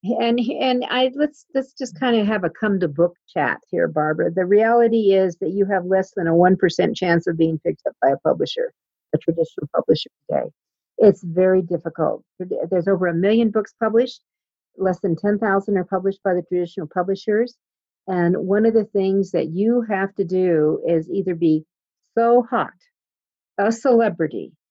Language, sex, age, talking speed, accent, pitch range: English, female, 50-69, 170 wpm, American, 175-220 Hz